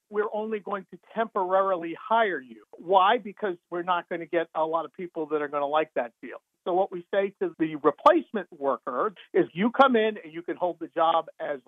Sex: male